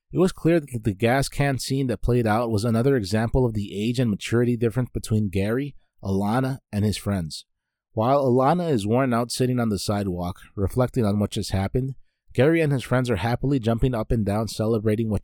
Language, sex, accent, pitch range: English, male, American, 105-130 Hz